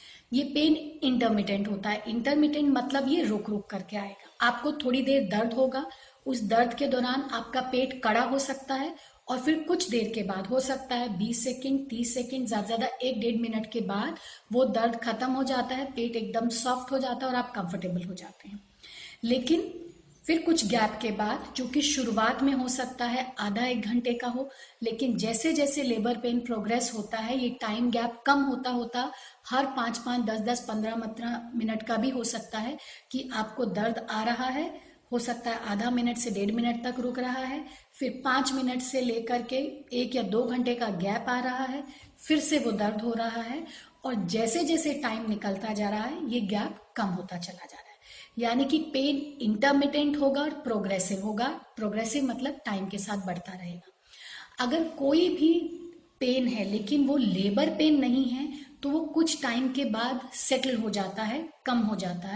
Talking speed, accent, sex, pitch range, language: 195 wpm, native, female, 225-270 Hz, Hindi